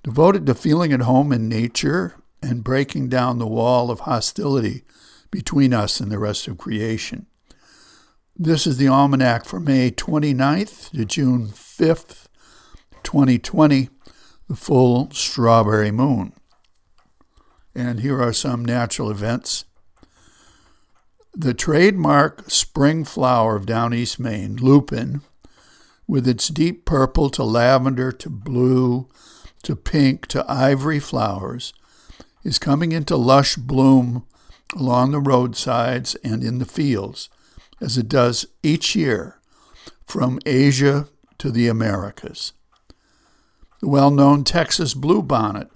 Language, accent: English, American